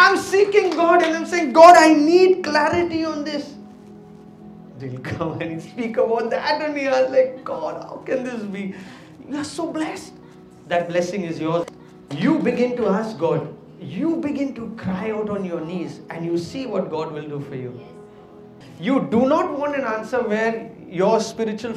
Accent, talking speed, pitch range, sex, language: Indian, 180 wpm, 175-290 Hz, male, English